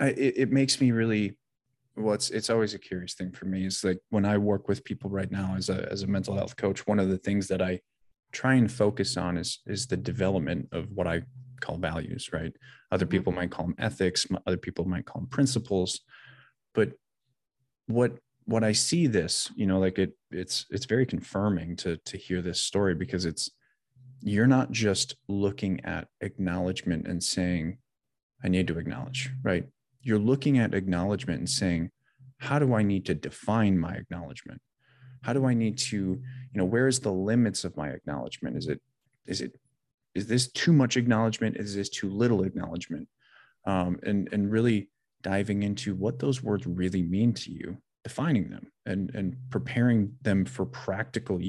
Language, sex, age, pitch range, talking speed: English, male, 20-39, 95-125 Hz, 185 wpm